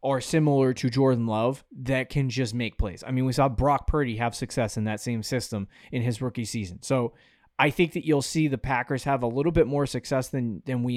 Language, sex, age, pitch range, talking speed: English, male, 20-39, 115-145 Hz, 235 wpm